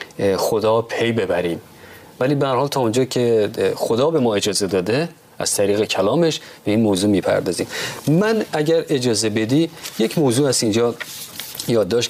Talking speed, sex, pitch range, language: 150 wpm, male, 105-145 Hz, Persian